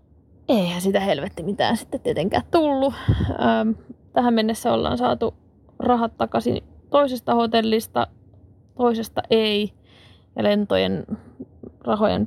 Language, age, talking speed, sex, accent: Finnish, 20-39, 100 wpm, female, native